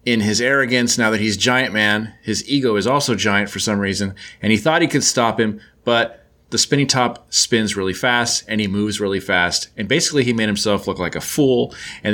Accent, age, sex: American, 30-49, male